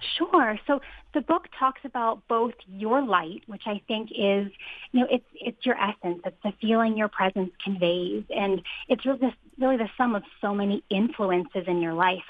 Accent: American